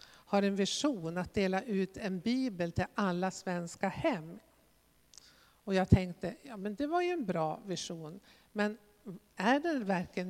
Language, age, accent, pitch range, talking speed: Swedish, 50-69, native, 175-225 Hz, 155 wpm